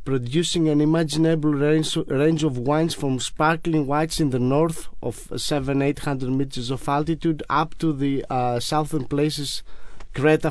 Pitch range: 135-160 Hz